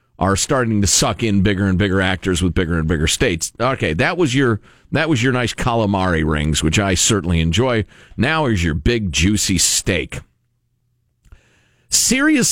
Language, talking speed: English, 170 wpm